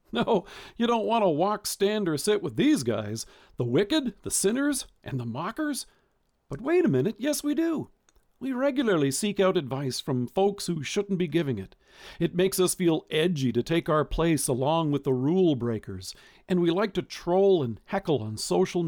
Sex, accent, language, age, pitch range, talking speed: male, American, English, 50-69, 135-200 Hz, 195 wpm